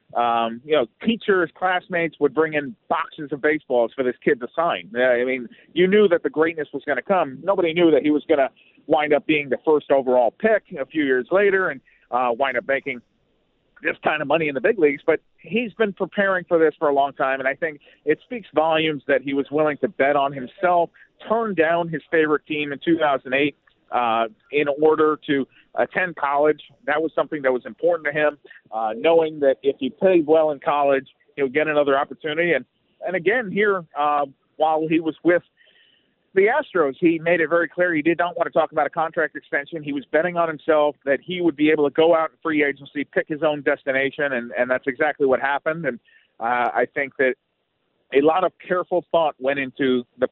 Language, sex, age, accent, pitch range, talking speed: English, male, 40-59, American, 140-170 Hz, 215 wpm